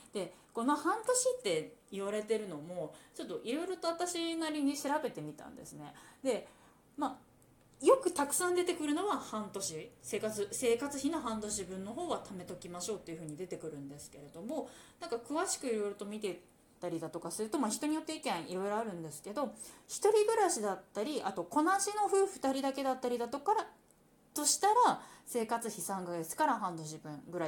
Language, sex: Japanese, female